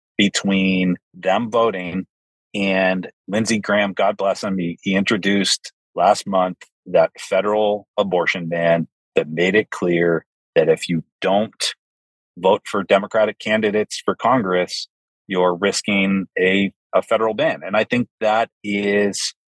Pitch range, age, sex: 90-115 Hz, 30-49, male